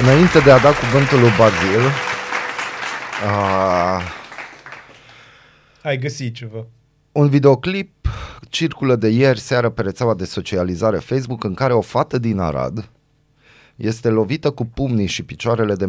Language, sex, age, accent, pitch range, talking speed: Romanian, male, 30-49, native, 95-130 Hz, 115 wpm